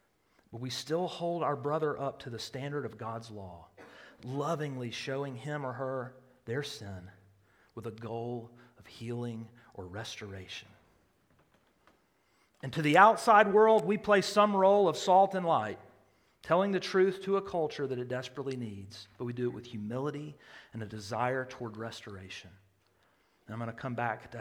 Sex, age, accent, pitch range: male, 40-59, American, 115-170 Hz